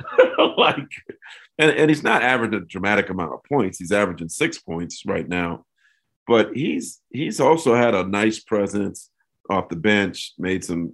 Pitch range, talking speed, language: 90-110 Hz, 165 wpm, English